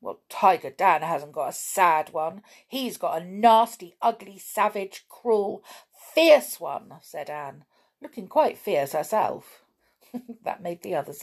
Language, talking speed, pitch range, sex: English, 145 wpm, 160-215 Hz, female